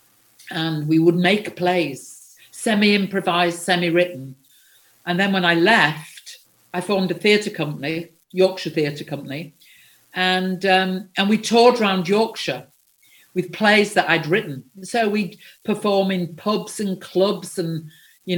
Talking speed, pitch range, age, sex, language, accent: 135 wpm, 165-205 Hz, 50-69, female, English, British